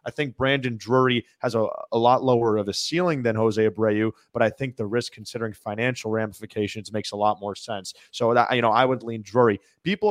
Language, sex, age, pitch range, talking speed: English, male, 30-49, 110-140 Hz, 220 wpm